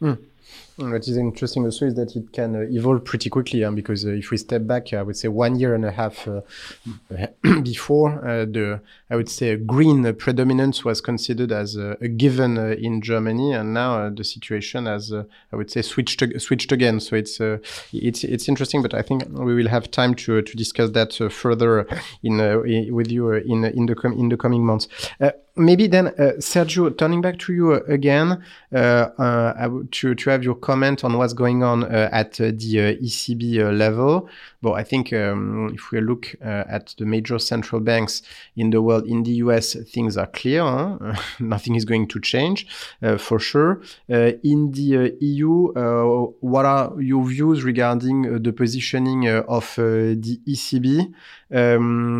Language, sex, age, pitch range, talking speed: English, male, 30-49, 110-130 Hz, 205 wpm